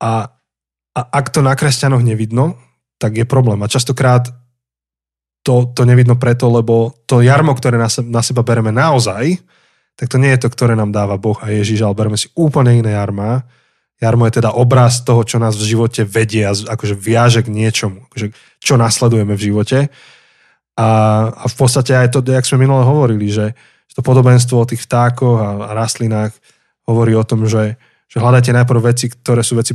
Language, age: Slovak, 20-39